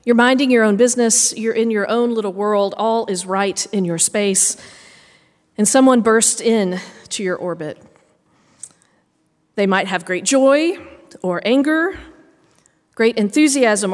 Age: 40-59